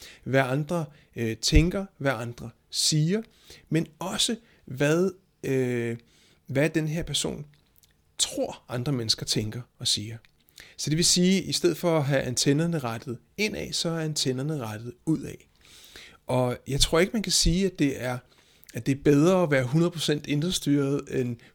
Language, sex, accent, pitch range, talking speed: Danish, male, native, 130-165 Hz, 160 wpm